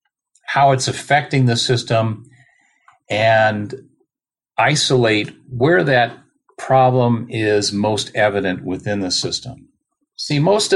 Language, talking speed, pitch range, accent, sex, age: English, 100 wpm, 115-140 Hz, American, male, 50-69